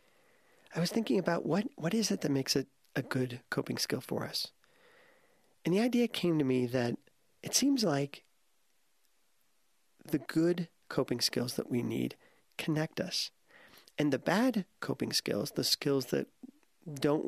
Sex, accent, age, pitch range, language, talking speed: male, American, 40-59, 130-185 Hz, English, 155 wpm